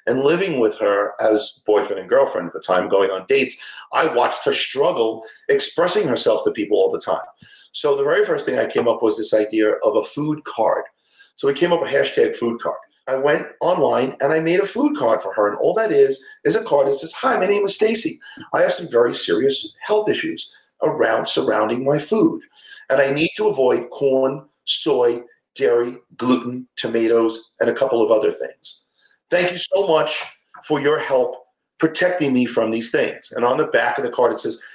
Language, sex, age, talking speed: English, male, 40-59, 210 wpm